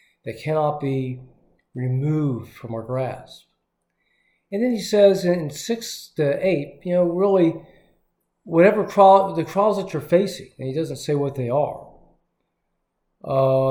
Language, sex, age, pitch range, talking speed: English, male, 50-69, 130-170 Hz, 140 wpm